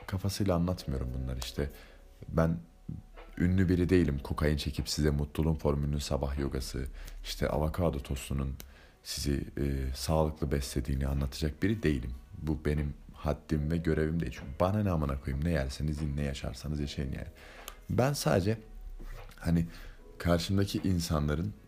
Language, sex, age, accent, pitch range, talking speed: Turkish, male, 30-49, native, 70-90 Hz, 130 wpm